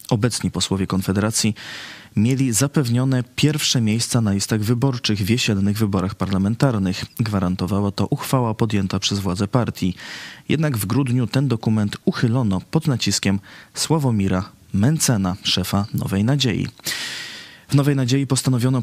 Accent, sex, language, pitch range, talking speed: native, male, Polish, 100-125 Hz, 120 wpm